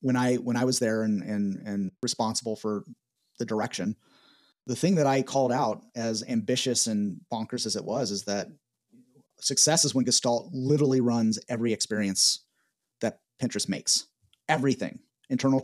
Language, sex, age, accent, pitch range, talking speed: English, male, 30-49, American, 115-145 Hz, 155 wpm